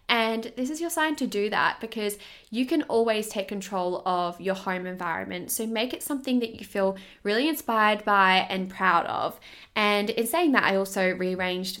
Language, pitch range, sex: English, 190-240 Hz, female